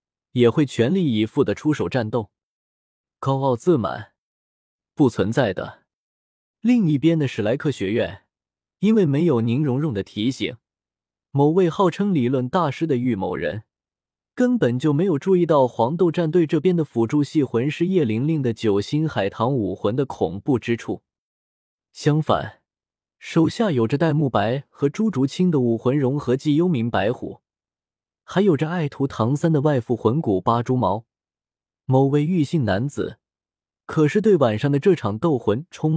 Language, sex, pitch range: Chinese, male, 115-165 Hz